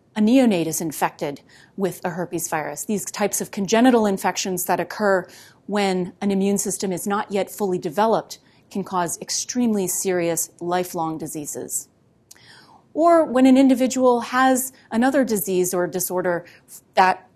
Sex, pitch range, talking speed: female, 175-215 Hz, 140 wpm